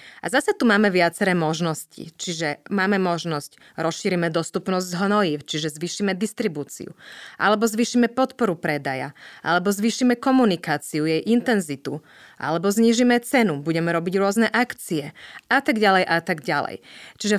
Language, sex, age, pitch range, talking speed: Slovak, female, 30-49, 160-210 Hz, 135 wpm